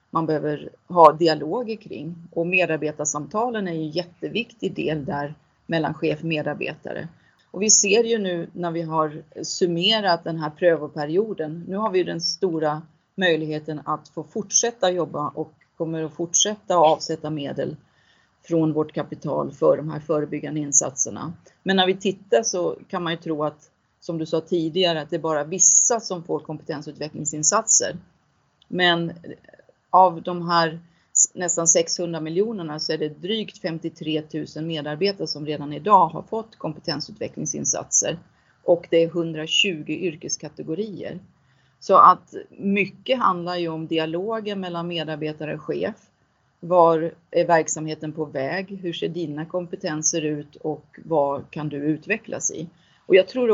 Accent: native